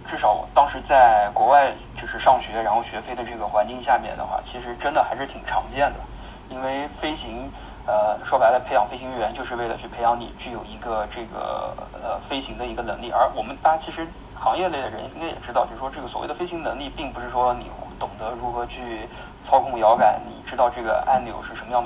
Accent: native